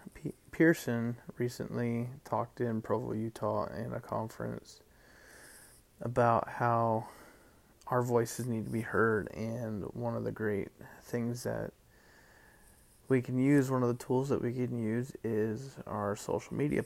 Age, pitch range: 20-39, 110-125 Hz